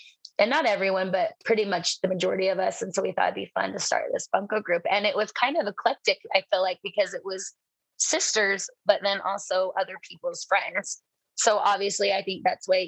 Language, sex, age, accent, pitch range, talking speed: English, female, 20-39, American, 185-220 Hz, 225 wpm